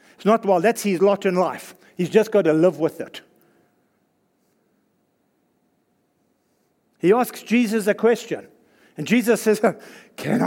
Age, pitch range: 60-79, 190-245 Hz